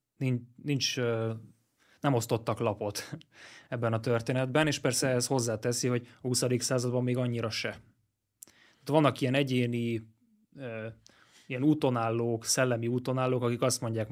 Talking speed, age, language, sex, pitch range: 125 wpm, 20-39, Hungarian, male, 115-130 Hz